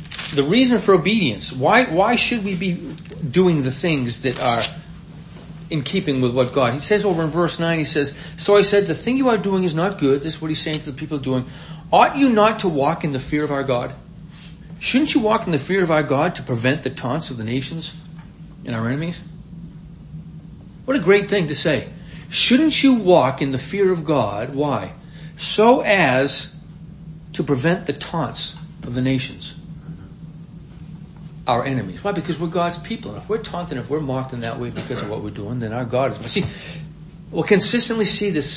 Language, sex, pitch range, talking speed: English, male, 135-170 Hz, 205 wpm